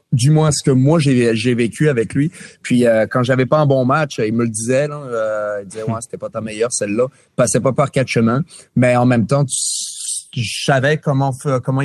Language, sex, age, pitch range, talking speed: French, male, 30-49, 115-145 Hz, 230 wpm